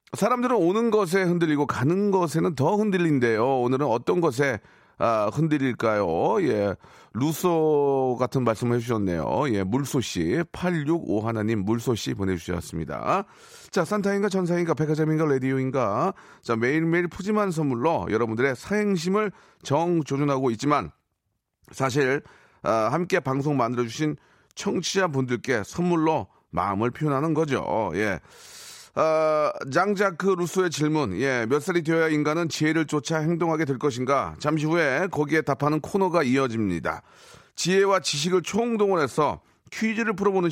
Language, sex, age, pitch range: Korean, male, 40-59, 130-175 Hz